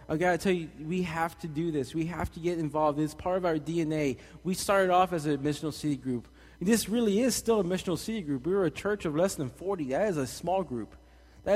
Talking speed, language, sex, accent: 260 wpm, English, male, American